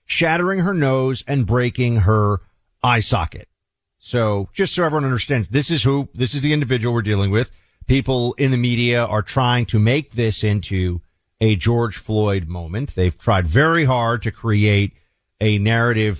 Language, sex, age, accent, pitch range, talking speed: English, male, 40-59, American, 100-130 Hz, 165 wpm